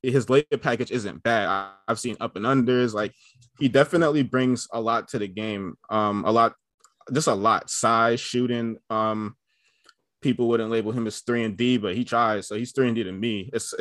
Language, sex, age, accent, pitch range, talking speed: English, male, 20-39, American, 110-125 Hz, 205 wpm